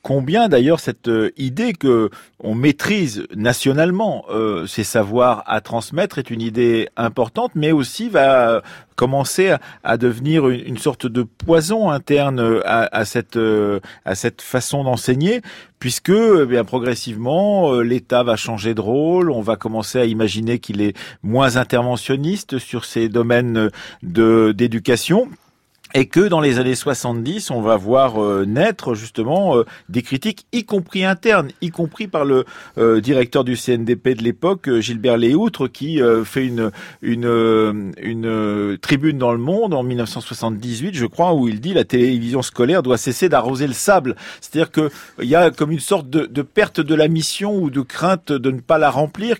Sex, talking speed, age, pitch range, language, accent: male, 160 wpm, 40-59, 115-160 Hz, French, French